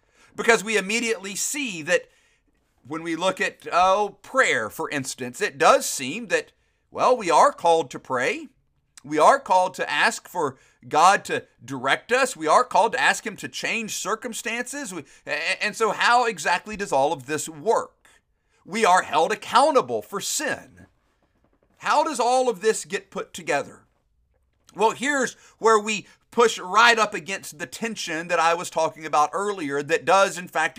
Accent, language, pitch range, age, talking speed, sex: American, English, 170-225 Hz, 50-69, 165 wpm, male